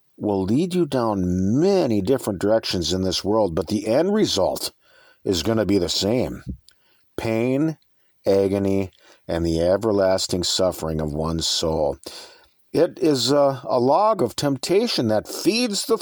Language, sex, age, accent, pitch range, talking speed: English, male, 50-69, American, 95-155 Hz, 145 wpm